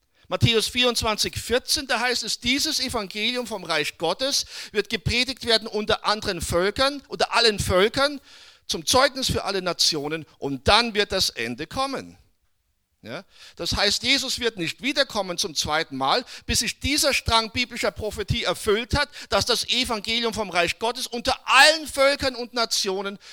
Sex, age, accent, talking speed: male, 50-69, German, 150 wpm